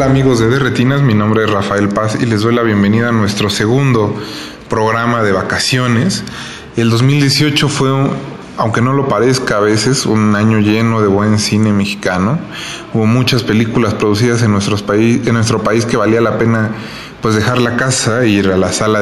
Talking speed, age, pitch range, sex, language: 190 wpm, 20-39, 105-120 Hz, male, Spanish